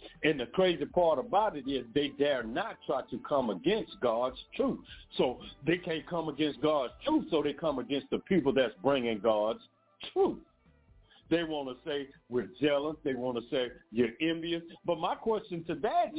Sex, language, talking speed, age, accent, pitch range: male, English, 185 wpm, 60-79, American, 145-215 Hz